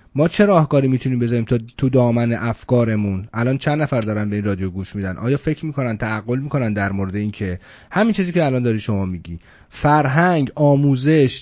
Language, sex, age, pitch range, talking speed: English, male, 30-49, 125-180 Hz, 180 wpm